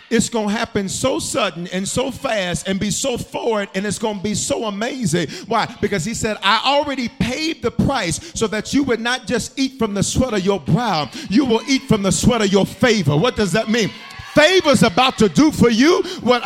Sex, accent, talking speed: male, American, 225 wpm